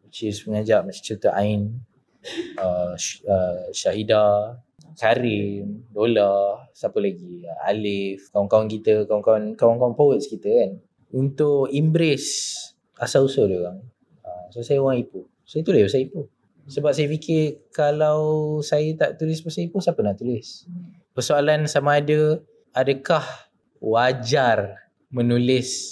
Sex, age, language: male, 20-39, Malay